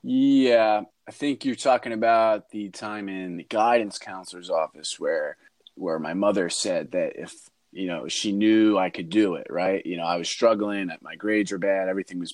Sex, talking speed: male, 195 wpm